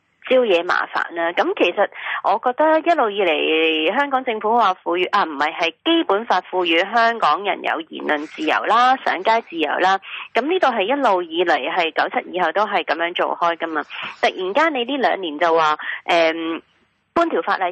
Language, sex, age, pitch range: Chinese, female, 30-49, 170-240 Hz